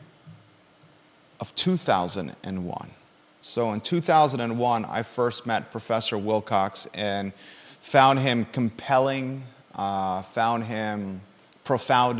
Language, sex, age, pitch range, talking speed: English, male, 30-49, 105-120 Hz, 90 wpm